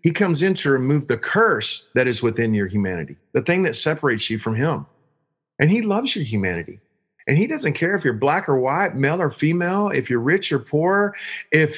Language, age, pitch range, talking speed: English, 40-59, 135-195 Hz, 215 wpm